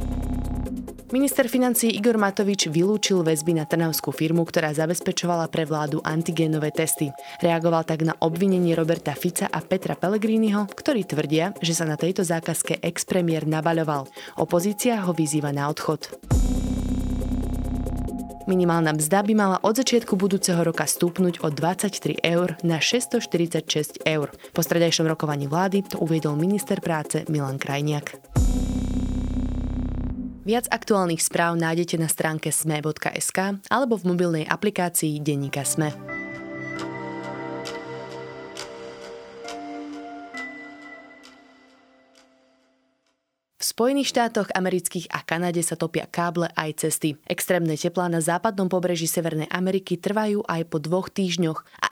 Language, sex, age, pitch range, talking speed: Slovak, female, 20-39, 145-185 Hz, 115 wpm